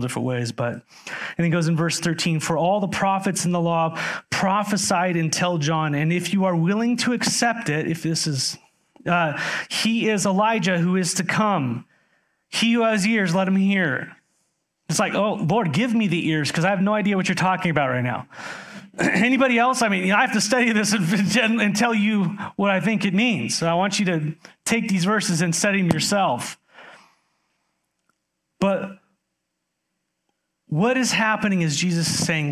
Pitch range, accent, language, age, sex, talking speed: 165-200 Hz, American, English, 30-49, male, 195 wpm